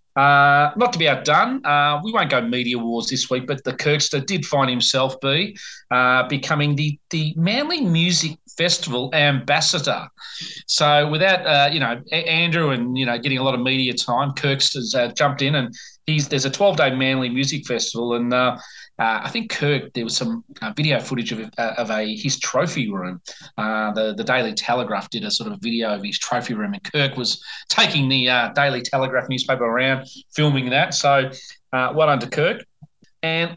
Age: 30-49